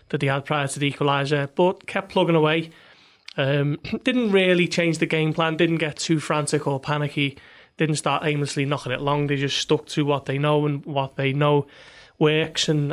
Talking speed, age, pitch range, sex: 200 wpm, 20-39, 150-165 Hz, male